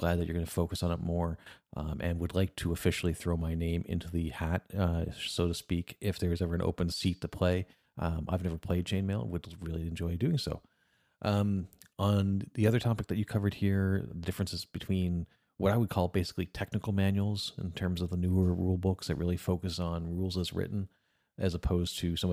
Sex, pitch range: male, 85-95 Hz